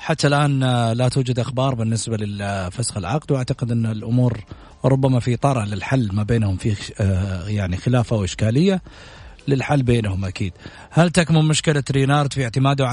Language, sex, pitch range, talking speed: Arabic, male, 105-140 Hz, 145 wpm